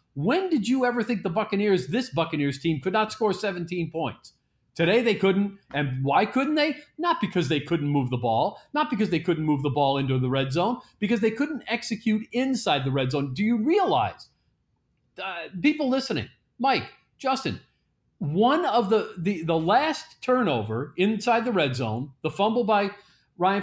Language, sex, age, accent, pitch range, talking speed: English, male, 40-59, American, 155-225 Hz, 180 wpm